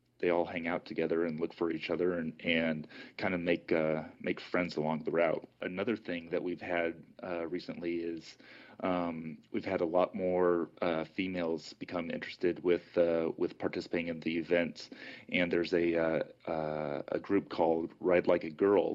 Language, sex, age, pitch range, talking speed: English, male, 30-49, 80-90 Hz, 185 wpm